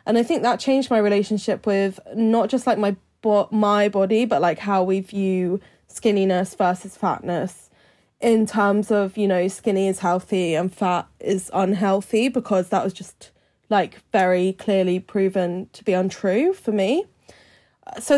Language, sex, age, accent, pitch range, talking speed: English, female, 10-29, British, 190-225 Hz, 160 wpm